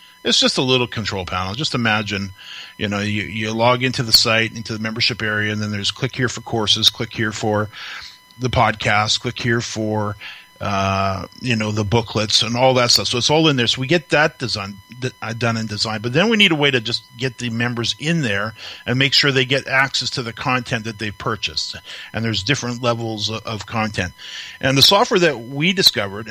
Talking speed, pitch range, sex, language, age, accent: 210 wpm, 105-135 Hz, male, English, 40-59, American